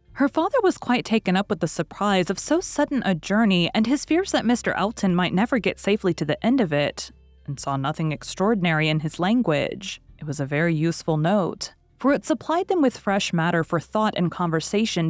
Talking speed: 210 wpm